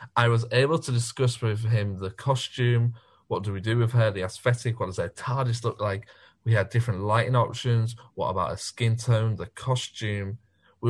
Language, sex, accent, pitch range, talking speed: English, male, British, 100-120 Hz, 200 wpm